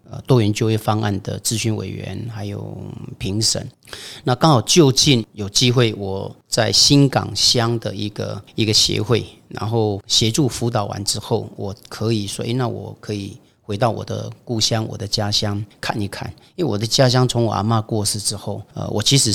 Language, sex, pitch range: Chinese, male, 105-120 Hz